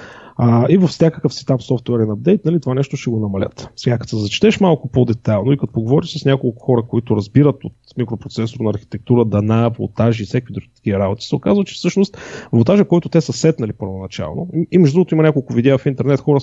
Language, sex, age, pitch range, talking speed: Bulgarian, male, 30-49, 120-155 Hz, 195 wpm